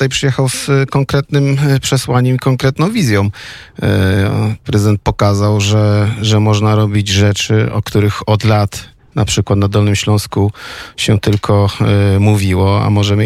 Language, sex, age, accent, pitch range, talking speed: Polish, male, 40-59, native, 100-110 Hz, 125 wpm